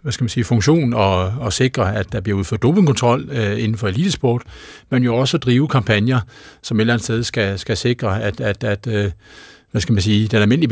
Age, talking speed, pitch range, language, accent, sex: 60-79, 225 wpm, 110-135 Hz, Danish, native, male